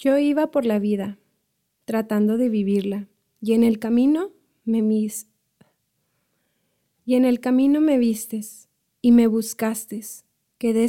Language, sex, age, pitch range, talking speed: English, female, 20-39, 210-245 Hz, 130 wpm